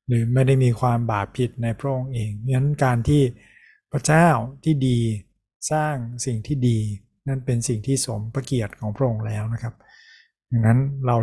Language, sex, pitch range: Thai, male, 115-135 Hz